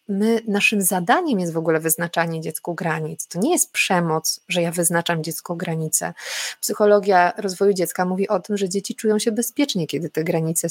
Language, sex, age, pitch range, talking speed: Polish, female, 20-39, 175-220 Hz, 180 wpm